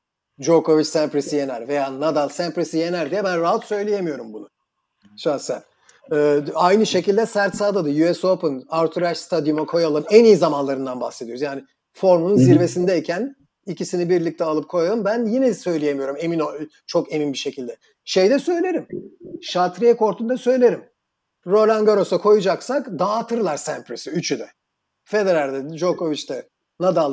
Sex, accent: male, native